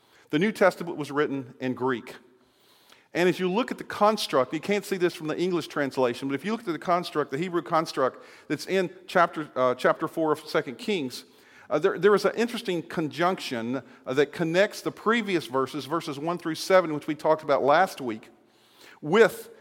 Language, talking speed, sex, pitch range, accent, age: English, 200 wpm, male, 140-185 Hz, American, 50-69